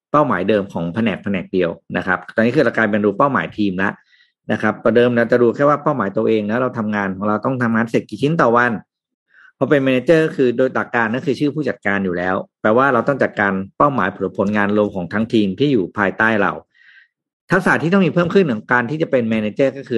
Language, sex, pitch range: Thai, male, 110-150 Hz